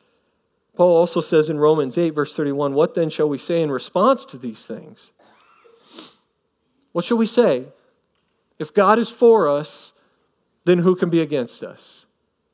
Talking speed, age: 160 wpm, 40-59